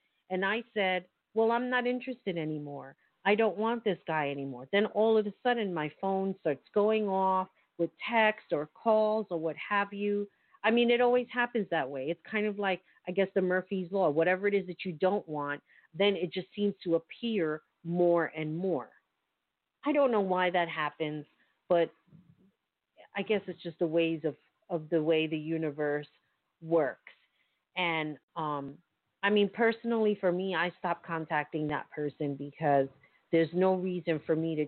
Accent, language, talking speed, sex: American, English, 180 wpm, female